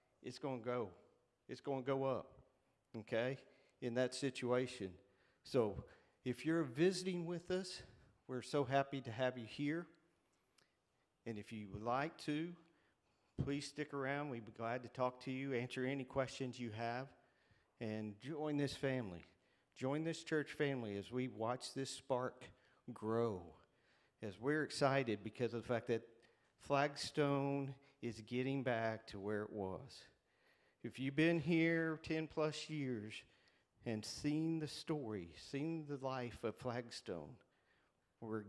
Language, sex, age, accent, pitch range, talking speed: English, male, 50-69, American, 110-140 Hz, 145 wpm